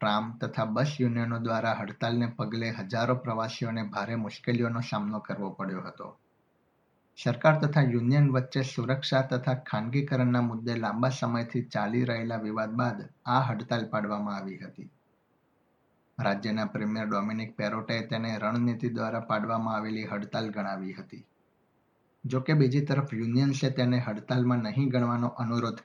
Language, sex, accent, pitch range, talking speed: Gujarati, male, native, 110-130 Hz, 130 wpm